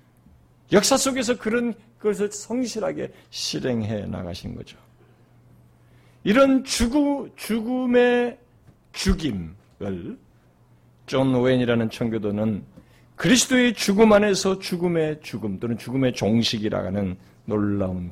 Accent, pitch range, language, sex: native, 120-200 Hz, Korean, male